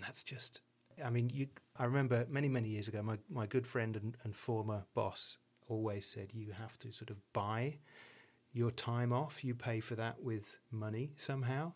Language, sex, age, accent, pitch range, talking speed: English, male, 30-49, British, 110-125 Hz, 185 wpm